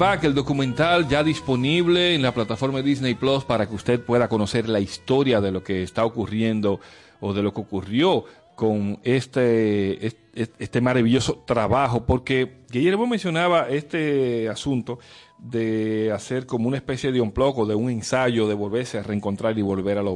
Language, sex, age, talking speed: Spanish, male, 40-59, 165 wpm